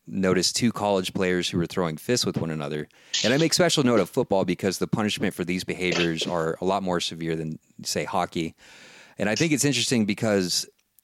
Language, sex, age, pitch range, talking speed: English, male, 30-49, 85-100 Hz, 205 wpm